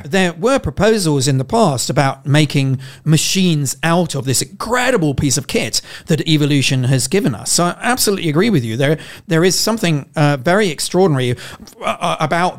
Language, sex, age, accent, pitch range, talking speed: Hebrew, male, 40-59, British, 135-175 Hz, 165 wpm